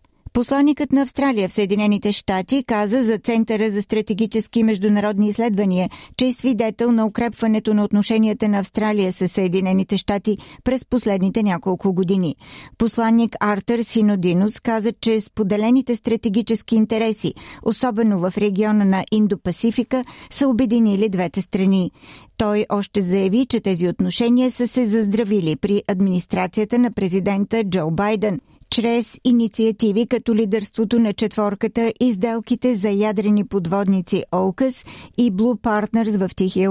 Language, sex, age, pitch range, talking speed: Bulgarian, female, 40-59, 195-230 Hz, 125 wpm